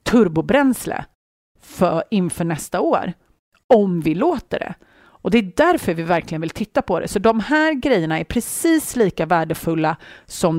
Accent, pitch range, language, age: native, 165-225 Hz, Swedish, 30-49